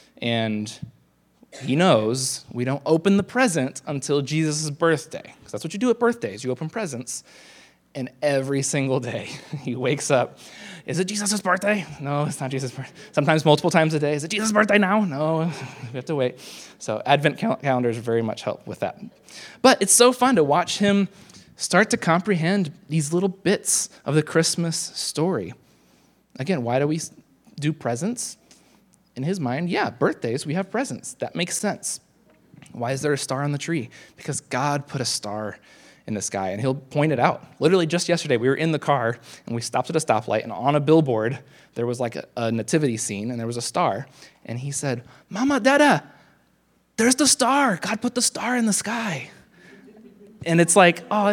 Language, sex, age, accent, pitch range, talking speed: English, male, 20-39, American, 130-195 Hz, 190 wpm